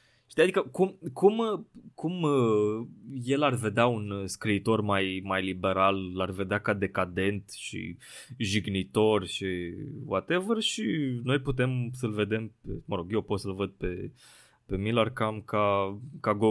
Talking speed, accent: 140 wpm, native